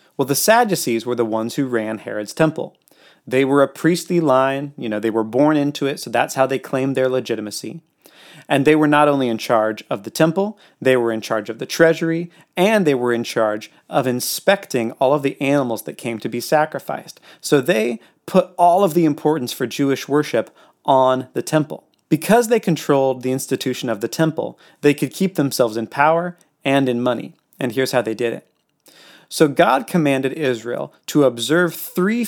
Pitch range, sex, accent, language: 120-160 Hz, male, American, English